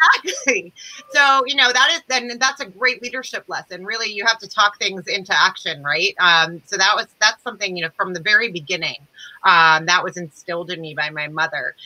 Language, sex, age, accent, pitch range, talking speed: English, female, 30-49, American, 175-215 Hz, 210 wpm